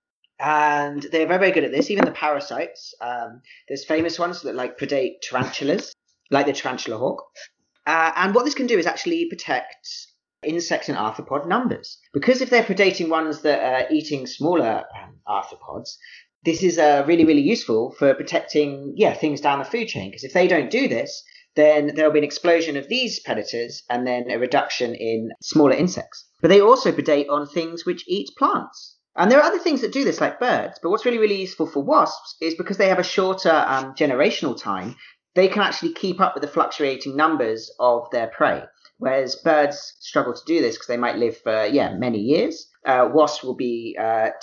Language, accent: English, British